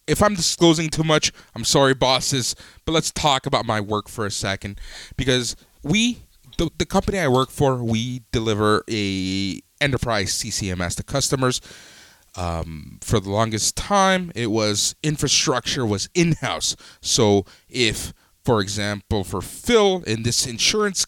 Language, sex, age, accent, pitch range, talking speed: English, male, 20-39, American, 95-145 Hz, 145 wpm